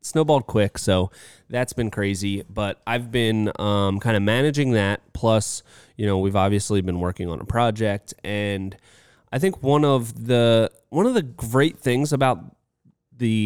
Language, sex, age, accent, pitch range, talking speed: English, male, 20-39, American, 95-115 Hz, 165 wpm